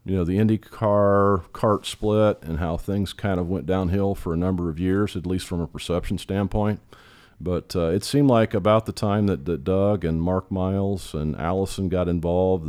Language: English